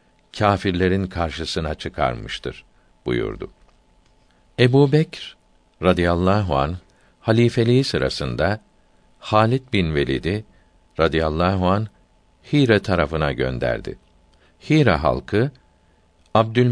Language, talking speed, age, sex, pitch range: Turkish, 75 wpm, 60-79, male, 80-105 Hz